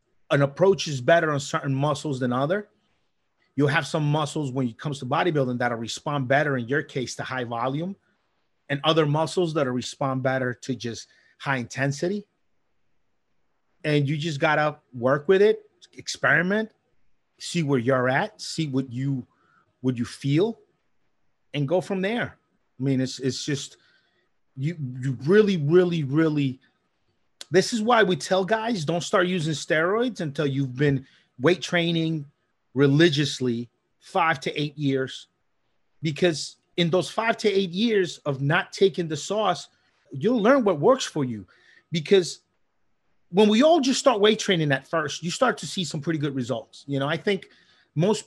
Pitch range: 140-190 Hz